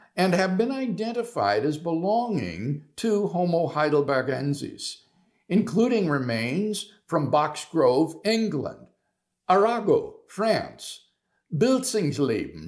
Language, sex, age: English, male, 60-79